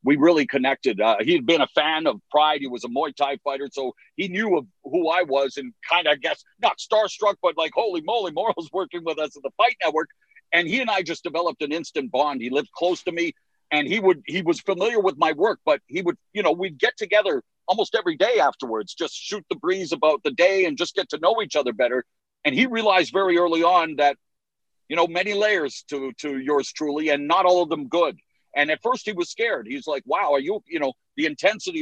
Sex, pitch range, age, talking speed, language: male, 155-225 Hz, 50-69, 240 wpm, English